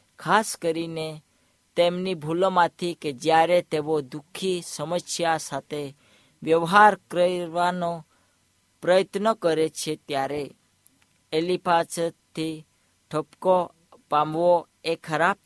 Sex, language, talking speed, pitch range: female, Hindi, 60 wpm, 145-180 Hz